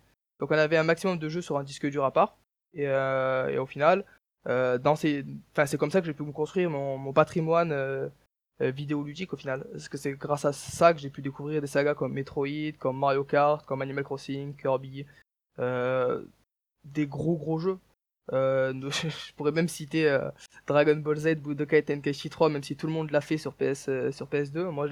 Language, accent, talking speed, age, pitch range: French, French, 215 wpm, 20-39, 140-165 Hz